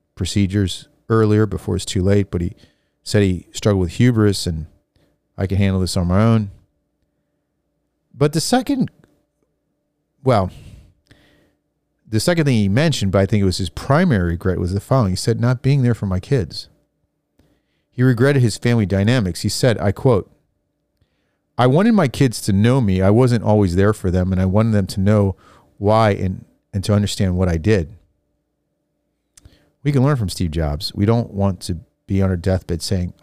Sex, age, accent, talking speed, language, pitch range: male, 40-59, American, 180 wpm, English, 90-115 Hz